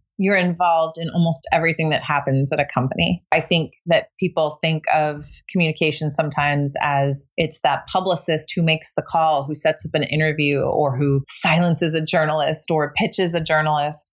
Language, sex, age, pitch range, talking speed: English, female, 30-49, 145-175 Hz, 170 wpm